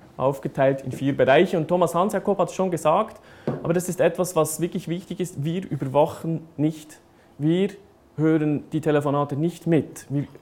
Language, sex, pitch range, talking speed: German, male, 135-170 Hz, 165 wpm